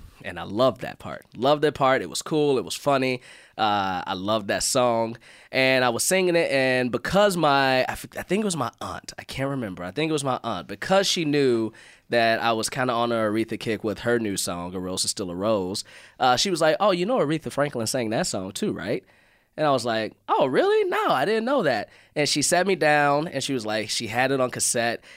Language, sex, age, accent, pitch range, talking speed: English, male, 20-39, American, 105-140 Hz, 245 wpm